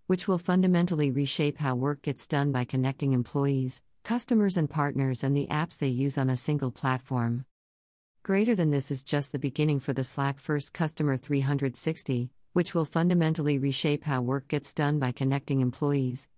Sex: female